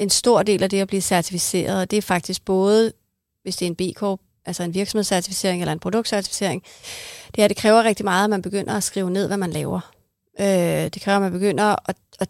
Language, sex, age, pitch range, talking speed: Danish, female, 30-49, 180-210 Hz, 225 wpm